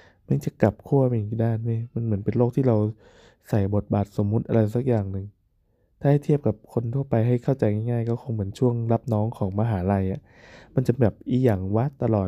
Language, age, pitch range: Thai, 20-39, 105-120 Hz